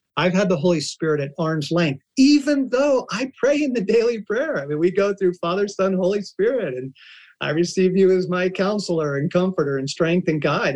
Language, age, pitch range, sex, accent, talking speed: English, 50-69, 145-185 Hz, male, American, 210 wpm